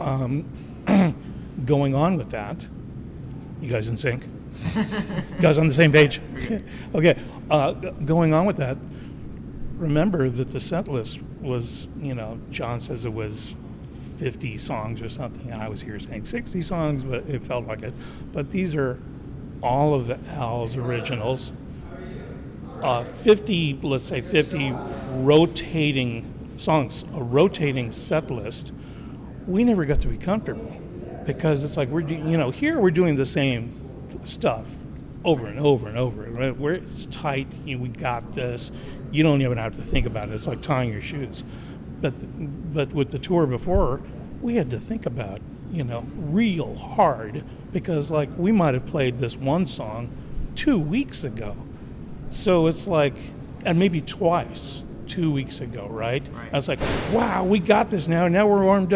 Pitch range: 125-165 Hz